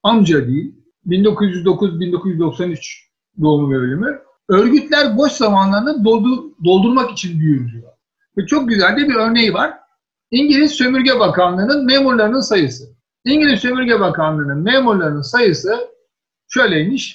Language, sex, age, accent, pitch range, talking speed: Turkish, male, 60-79, native, 175-250 Hz, 110 wpm